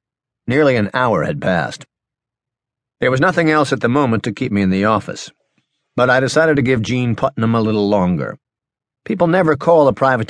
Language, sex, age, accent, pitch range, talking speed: English, male, 50-69, American, 110-140 Hz, 190 wpm